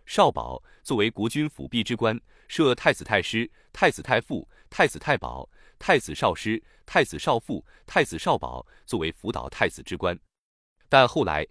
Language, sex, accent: Chinese, male, native